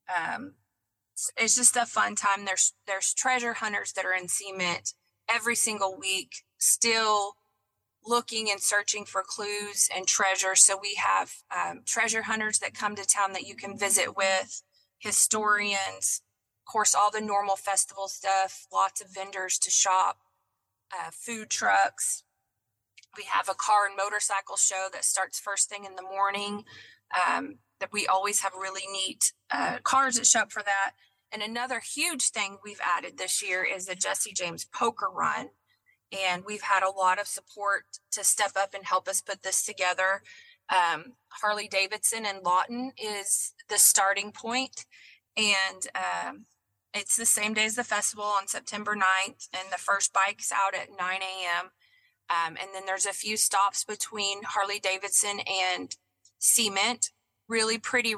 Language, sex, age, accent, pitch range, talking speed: English, female, 20-39, American, 190-215 Hz, 160 wpm